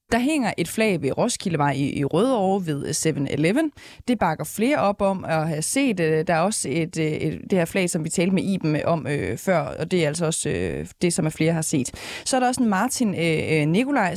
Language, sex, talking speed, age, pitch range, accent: Danish, female, 235 wpm, 20-39, 160-200 Hz, native